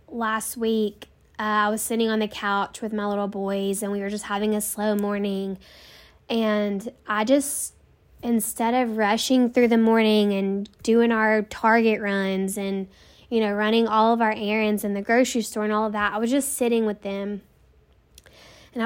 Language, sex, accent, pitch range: English, female, American, 205-230 Hz